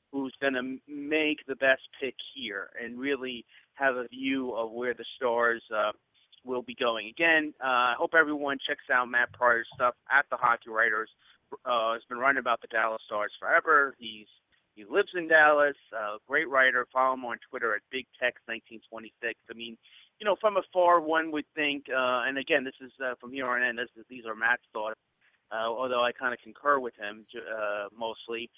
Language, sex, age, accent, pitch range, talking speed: English, male, 30-49, American, 120-145 Hz, 200 wpm